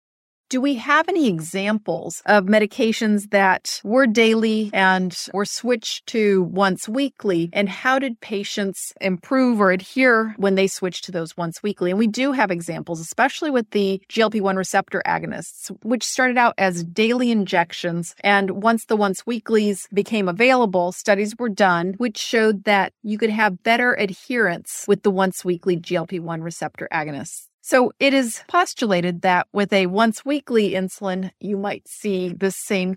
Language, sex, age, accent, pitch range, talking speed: English, female, 40-59, American, 185-225 Hz, 155 wpm